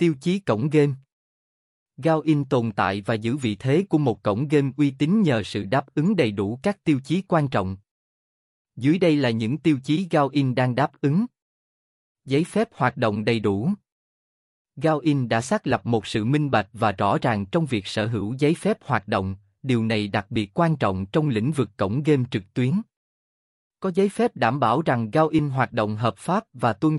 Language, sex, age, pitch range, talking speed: Vietnamese, male, 20-39, 110-155 Hz, 205 wpm